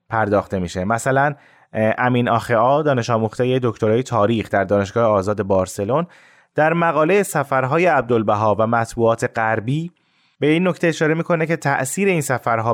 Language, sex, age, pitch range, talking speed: Persian, male, 20-39, 110-160 Hz, 130 wpm